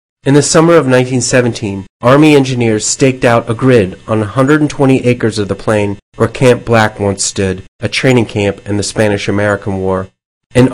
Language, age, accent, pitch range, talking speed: English, 40-59, American, 105-125 Hz, 170 wpm